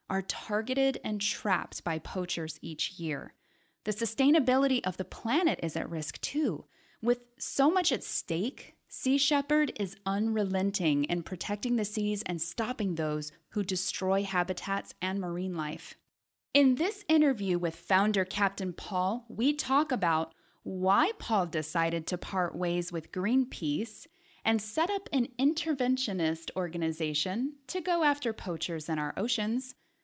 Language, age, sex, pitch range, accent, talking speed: English, 10-29, female, 180-270 Hz, American, 140 wpm